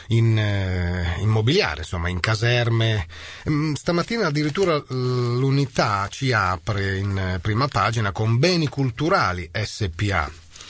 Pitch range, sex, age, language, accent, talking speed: 95-130 Hz, male, 40-59, Italian, native, 95 wpm